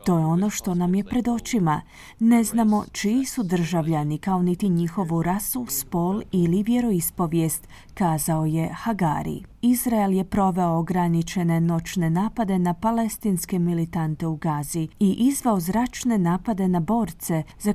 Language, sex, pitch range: Croatian, female, 170-225 Hz